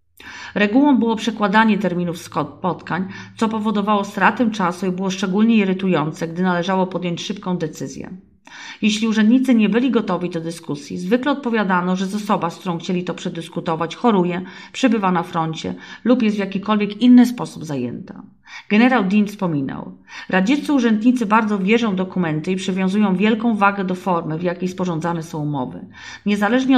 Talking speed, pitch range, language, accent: 150 wpm, 170-220 Hz, Polish, native